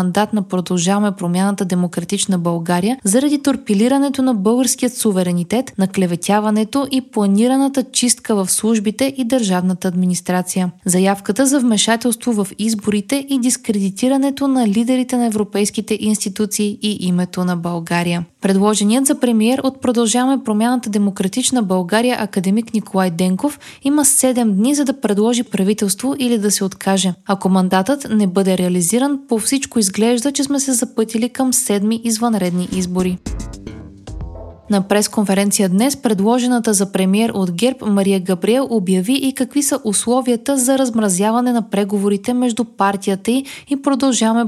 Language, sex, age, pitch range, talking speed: Bulgarian, female, 20-39, 190-245 Hz, 130 wpm